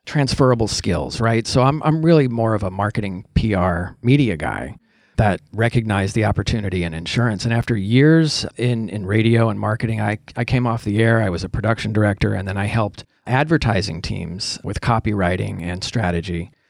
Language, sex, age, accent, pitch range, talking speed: English, male, 30-49, American, 105-130 Hz, 175 wpm